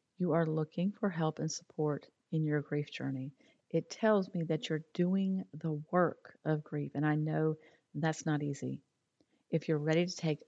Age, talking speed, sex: 40-59, 185 wpm, female